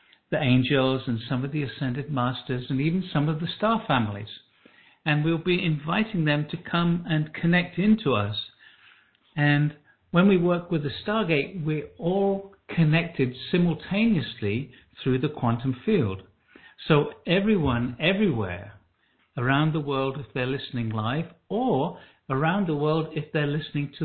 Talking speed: 145 wpm